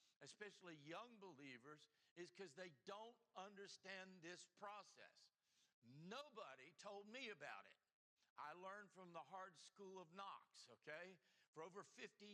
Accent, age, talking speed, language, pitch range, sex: American, 60-79, 130 wpm, English, 165-195 Hz, male